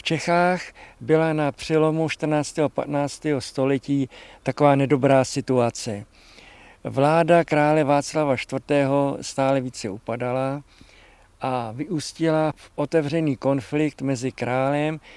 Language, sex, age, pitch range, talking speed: Czech, male, 50-69, 130-155 Hz, 100 wpm